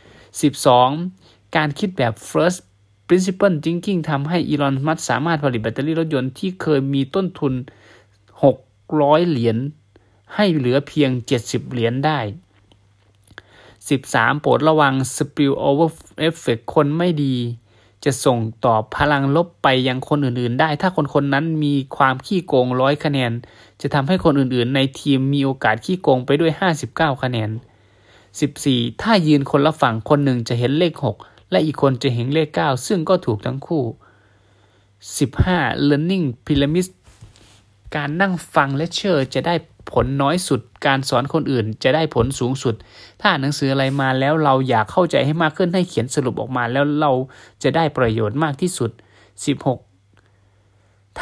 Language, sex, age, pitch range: Thai, male, 20-39, 115-155 Hz